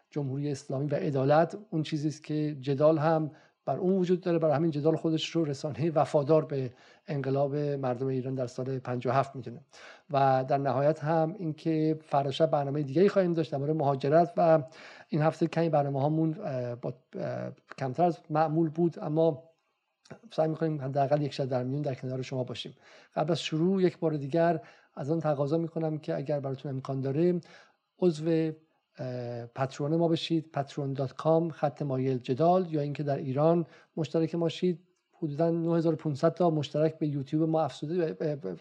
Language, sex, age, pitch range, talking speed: Persian, male, 50-69, 140-165 Hz, 160 wpm